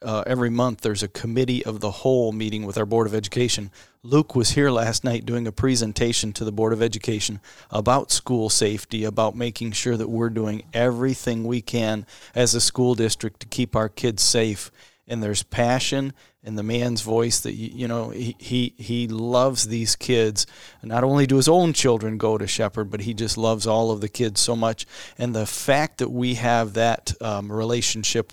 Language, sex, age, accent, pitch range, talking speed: English, male, 40-59, American, 110-125 Hz, 200 wpm